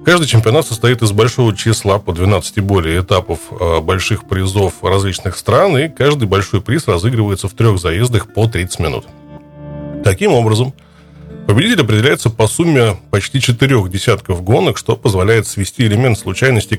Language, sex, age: Russian, male, 20-39